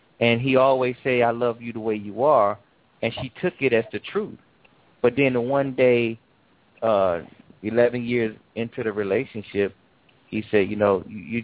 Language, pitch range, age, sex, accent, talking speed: English, 110-160 Hz, 30-49, male, American, 175 wpm